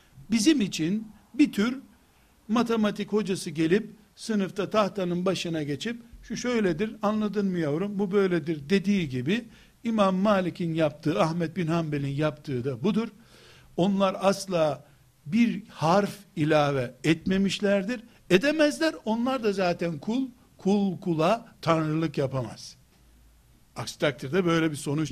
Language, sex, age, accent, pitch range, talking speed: Turkish, male, 60-79, native, 150-205 Hz, 115 wpm